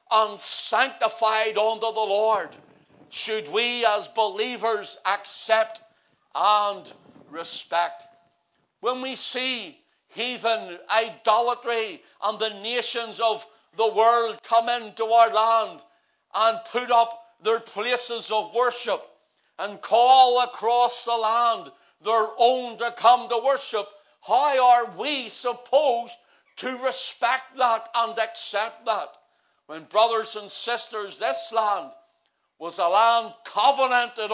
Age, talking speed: 60-79, 115 wpm